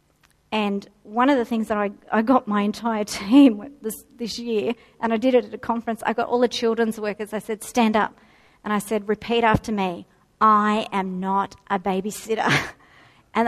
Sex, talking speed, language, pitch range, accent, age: female, 195 wpm, English, 210-245 Hz, Australian, 50-69